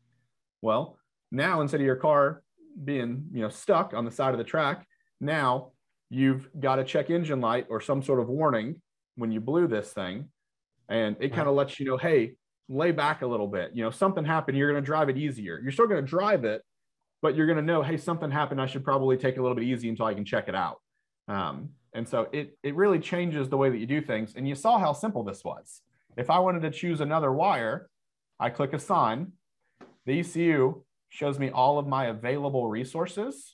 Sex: male